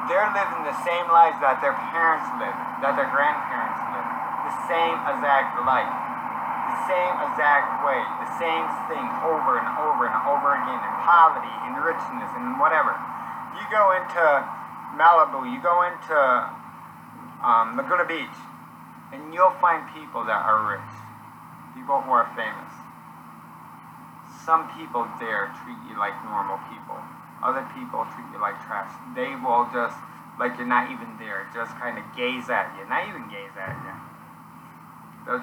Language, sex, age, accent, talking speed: English, male, 30-49, American, 155 wpm